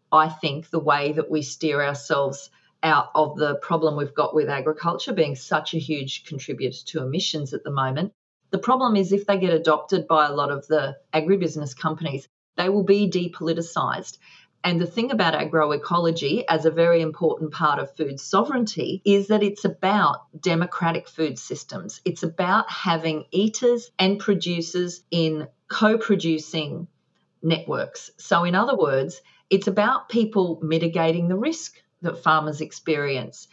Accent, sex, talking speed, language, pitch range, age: Australian, female, 155 wpm, English, 155-200 Hz, 40-59